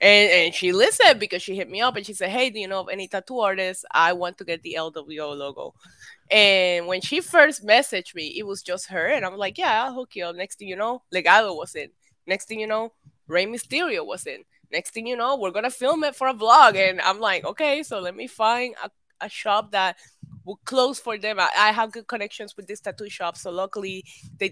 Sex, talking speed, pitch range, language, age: female, 245 wpm, 185-245 Hz, English, 20-39